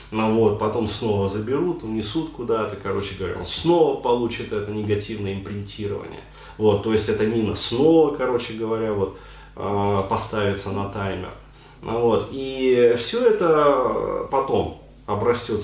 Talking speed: 120 wpm